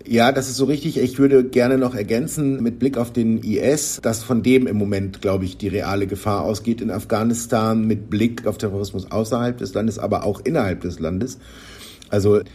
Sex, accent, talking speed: male, German, 195 wpm